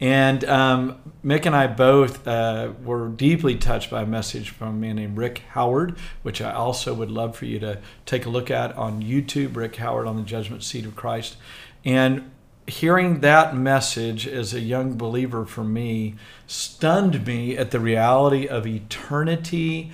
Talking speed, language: 175 wpm, English